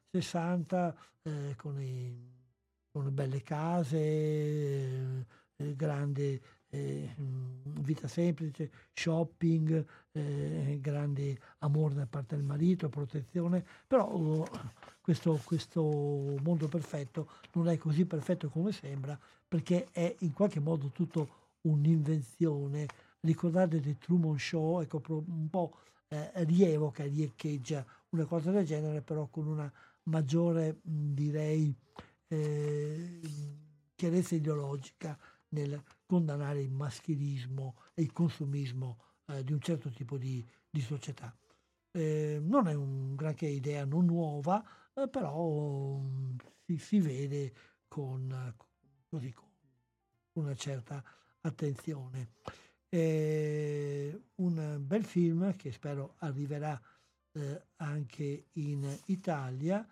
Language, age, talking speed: Italian, 60-79, 105 wpm